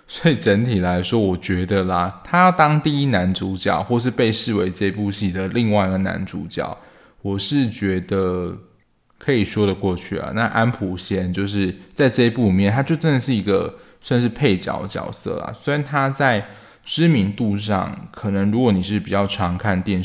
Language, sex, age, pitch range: Chinese, male, 20-39, 95-115 Hz